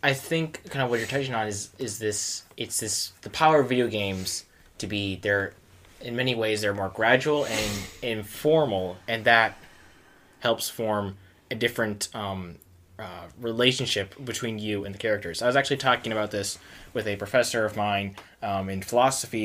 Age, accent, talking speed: 20-39, American, 180 wpm